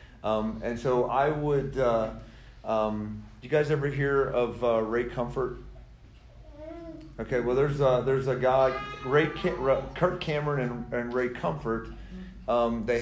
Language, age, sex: English, 40-59, male